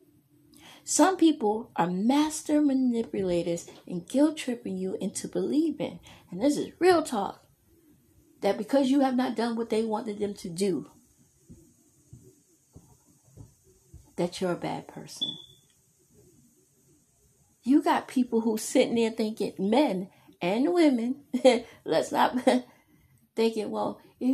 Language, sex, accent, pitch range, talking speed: English, female, American, 195-270 Hz, 120 wpm